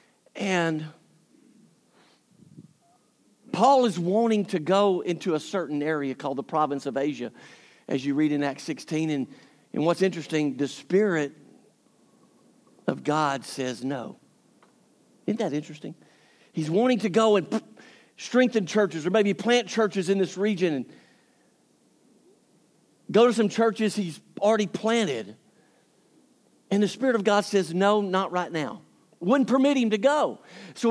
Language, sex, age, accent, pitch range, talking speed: English, male, 50-69, American, 180-230 Hz, 140 wpm